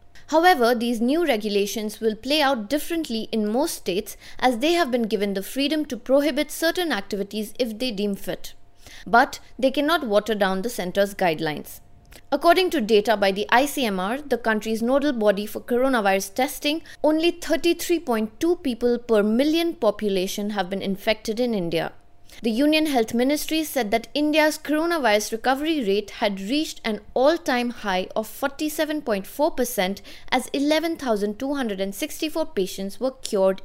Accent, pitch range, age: Indian, 205-290 Hz, 20-39